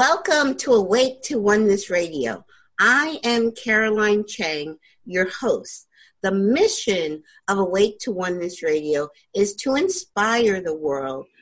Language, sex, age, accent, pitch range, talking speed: English, female, 50-69, American, 180-235 Hz, 125 wpm